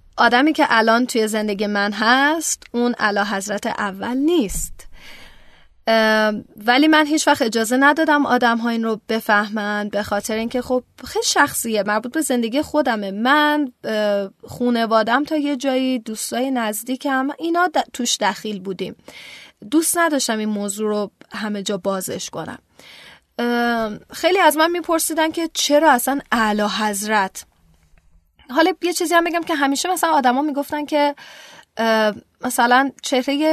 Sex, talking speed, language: female, 135 wpm, Persian